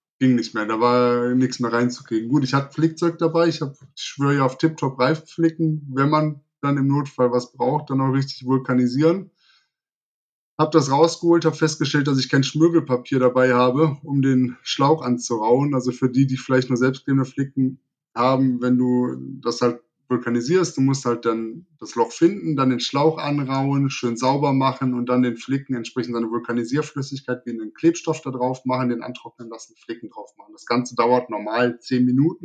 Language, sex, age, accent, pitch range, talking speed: German, male, 20-39, German, 125-155 Hz, 185 wpm